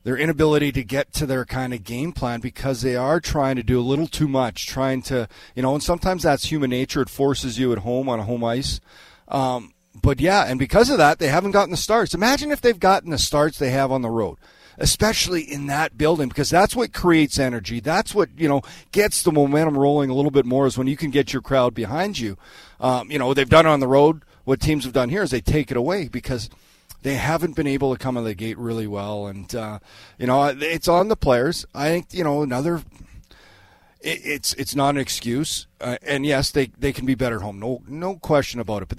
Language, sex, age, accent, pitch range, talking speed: English, male, 40-59, American, 120-150 Hz, 245 wpm